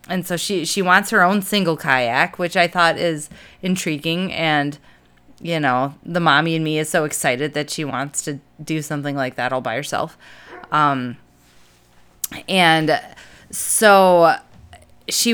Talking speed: 155 wpm